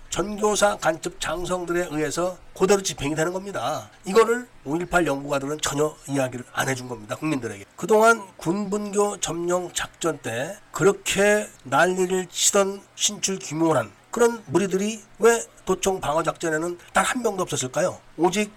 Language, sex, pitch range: Korean, male, 160-200 Hz